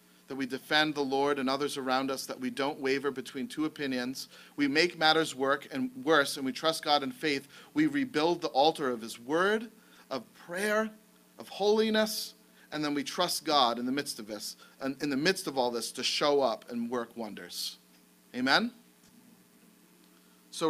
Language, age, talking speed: English, 40-59, 185 wpm